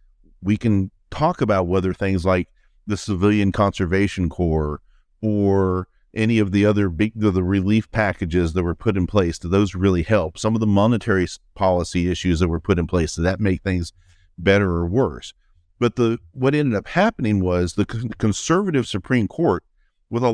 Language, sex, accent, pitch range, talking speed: English, male, American, 90-110 Hz, 180 wpm